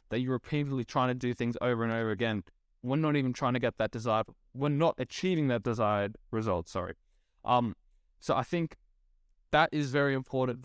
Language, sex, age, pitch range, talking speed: English, male, 20-39, 115-140 Hz, 190 wpm